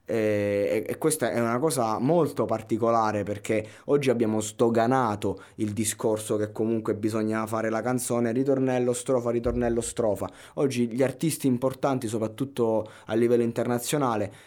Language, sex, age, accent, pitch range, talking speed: Italian, male, 20-39, native, 105-130 Hz, 135 wpm